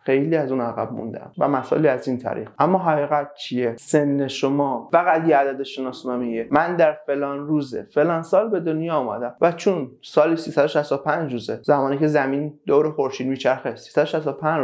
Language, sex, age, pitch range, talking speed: Persian, male, 30-49, 135-160 Hz, 160 wpm